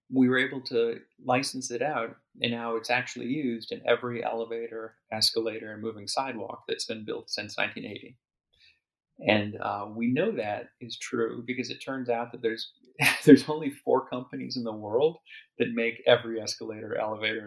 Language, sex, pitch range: English, male, 110-125 Hz